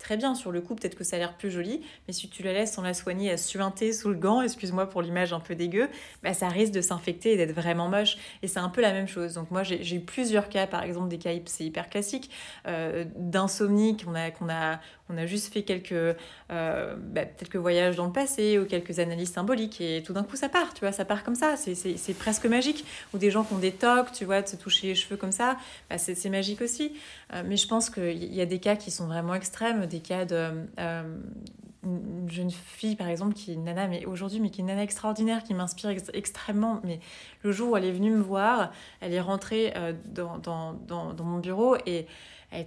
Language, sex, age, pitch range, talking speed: French, female, 20-39, 175-215 Hz, 255 wpm